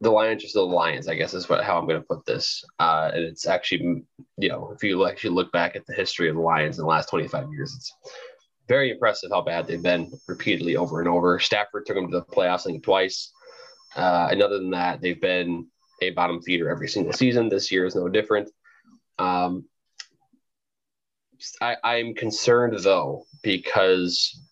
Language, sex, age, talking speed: English, male, 20-39, 200 wpm